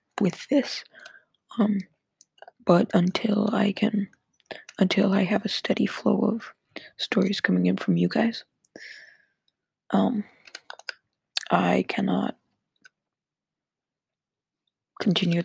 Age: 20-39